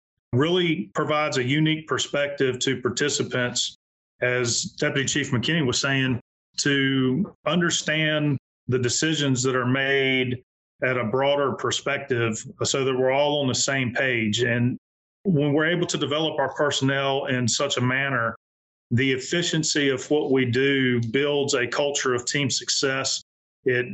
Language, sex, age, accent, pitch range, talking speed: English, male, 40-59, American, 125-145 Hz, 145 wpm